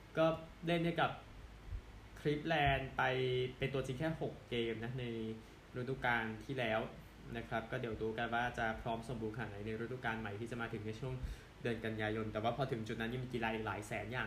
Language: Thai